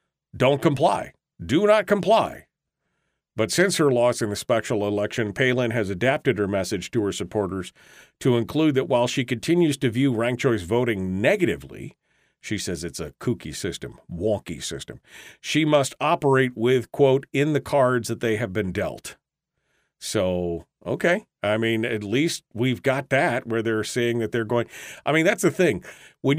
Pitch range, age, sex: 110-150 Hz, 50-69, male